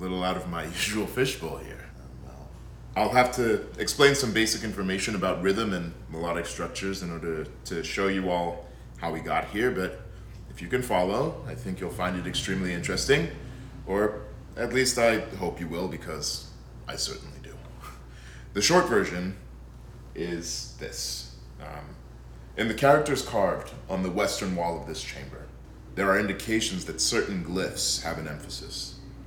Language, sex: English, male